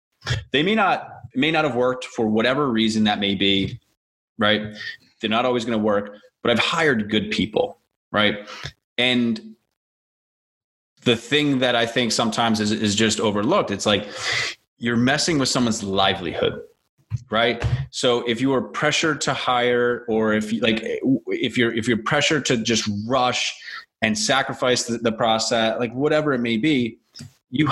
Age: 20-39